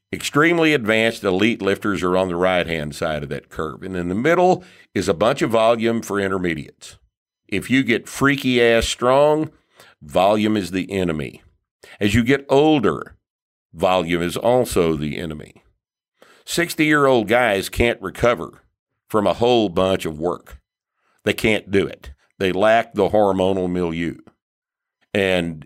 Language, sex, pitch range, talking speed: English, male, 95-125 Hz, 145 wpm